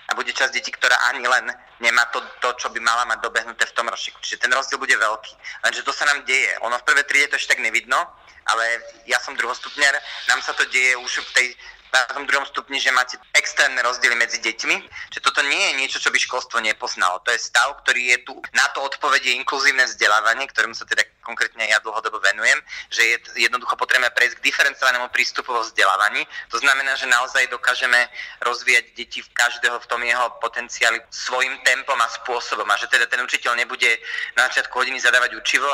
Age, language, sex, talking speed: 30-49, Slovak, male, 205 wpm